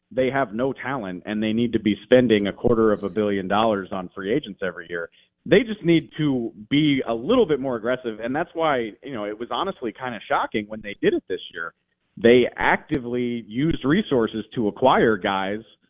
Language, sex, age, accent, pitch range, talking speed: English, male, 40-59, American, 110-155 Hz, 210 wpm